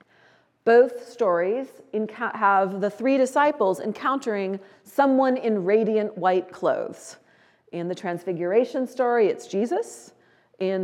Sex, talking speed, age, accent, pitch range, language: female, 105 wpm, 40-59, American, 175-230 Hz, English